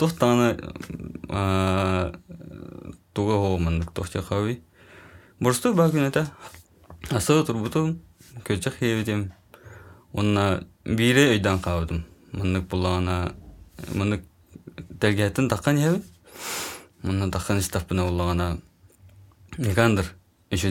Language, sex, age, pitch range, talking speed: Russian, male, 20-39, 90-105 Hz, 70 wpm